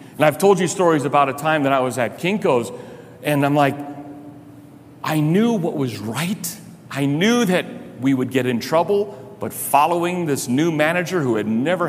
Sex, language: male, English